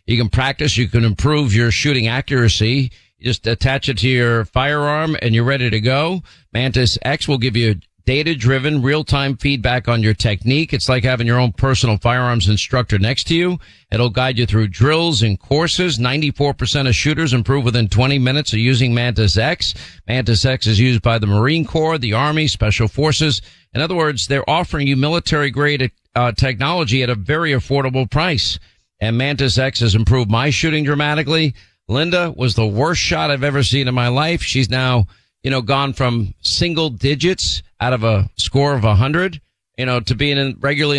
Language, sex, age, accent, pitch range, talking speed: English, male, 50-69, American, 115-145 Hz, 185 wpm